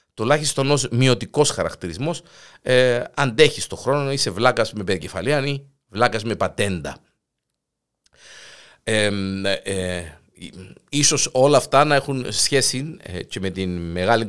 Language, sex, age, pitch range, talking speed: Greek, male, 50-69, 90-130 Hz, 135 wpm